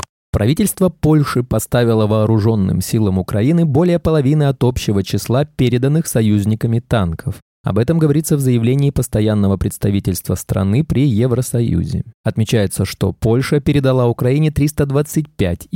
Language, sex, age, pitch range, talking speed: Russian, male, 20-39, 105-150 Hz, 115 wpm